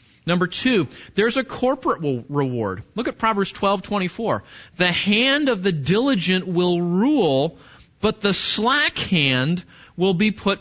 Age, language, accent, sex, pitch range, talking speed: 30-49, English, American, male, 155-210 Hz, 135 wpm